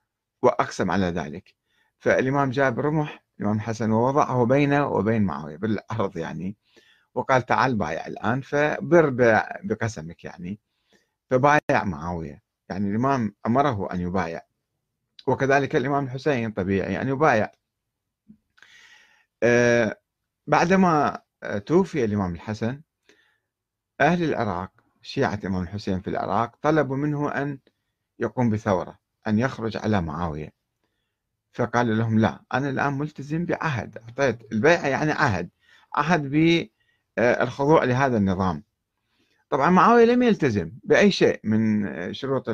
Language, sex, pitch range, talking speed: Arabic, male, 105-150 Hz, 110 wpm